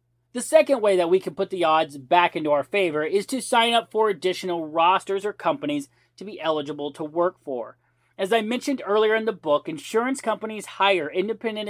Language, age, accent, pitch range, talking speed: English, 40-59, American, 150-210 Hz, 200 wpm